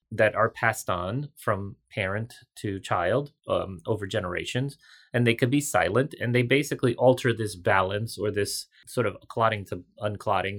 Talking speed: 165 wpm